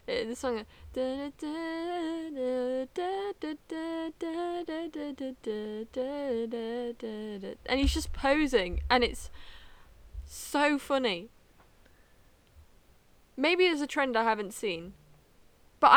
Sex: female